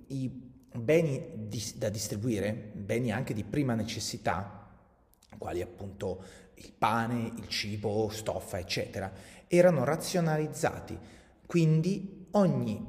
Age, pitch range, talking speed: 30-49, 95-130 Hz, 100 wpm